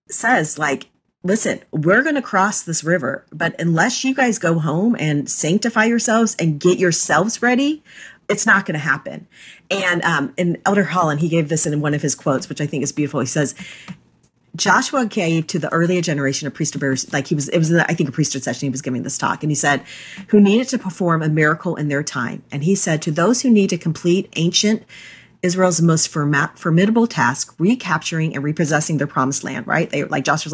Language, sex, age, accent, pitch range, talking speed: English, female, 40-59, American, 150-200 Hz, 210 wpm